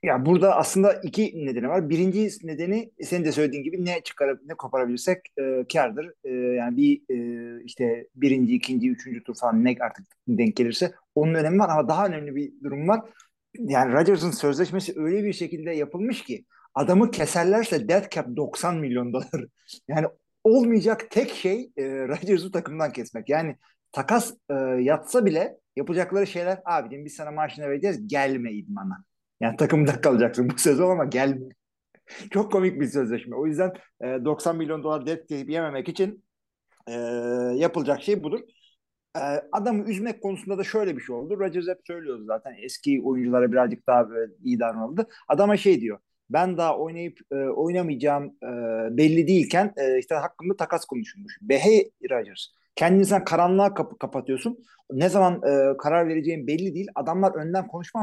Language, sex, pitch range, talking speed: Turkish, male, 135-195 Hz, 150 wpm